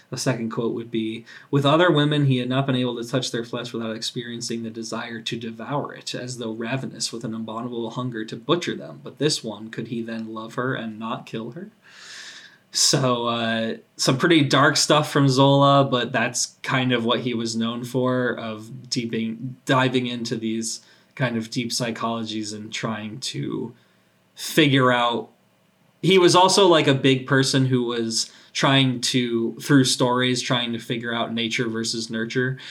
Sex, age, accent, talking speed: male, 20-39, American, 180 wpm